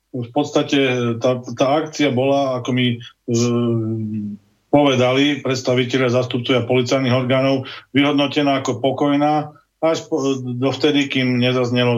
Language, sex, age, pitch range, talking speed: Slovak, male, 40-59, 120-135 Hz, 120 wpm